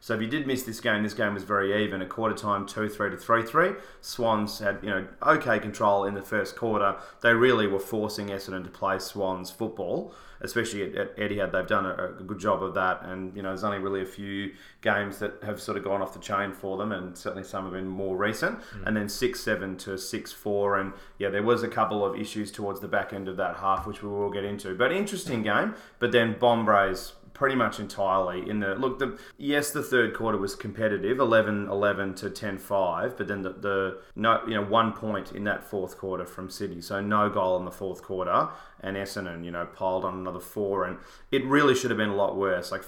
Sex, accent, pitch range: male, Australian, 95-110 Hz